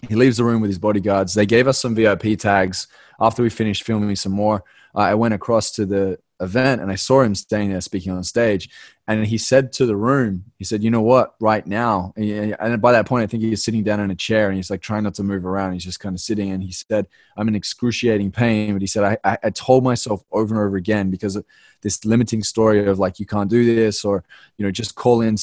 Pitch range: 100-115 Hz